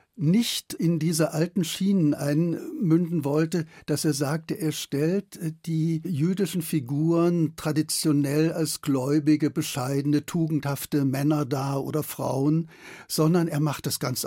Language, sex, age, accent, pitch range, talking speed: German, male, 60-79, German, 140-160 Hz, 120 wpm